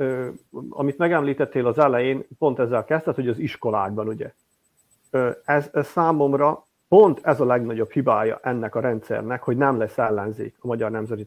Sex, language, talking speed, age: male, Hungarian, 165 wpm, 50-69